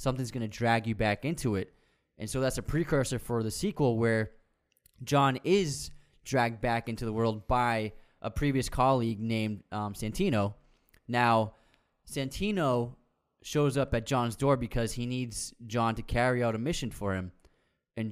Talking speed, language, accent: 165 wpm, English, American